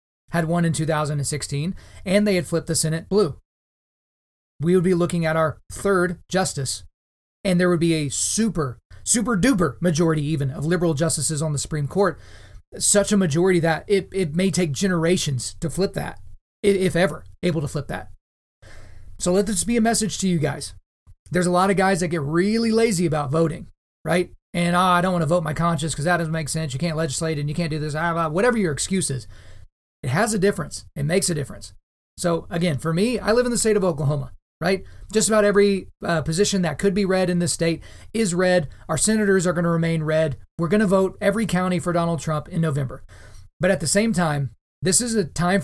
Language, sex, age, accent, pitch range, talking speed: English, male, 30-49, American, 150-185 Hz, 210 wpm